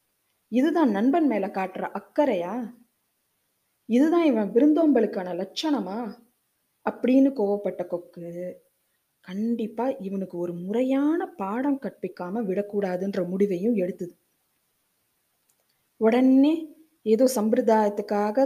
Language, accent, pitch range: Tamil, native, 190-270 Hz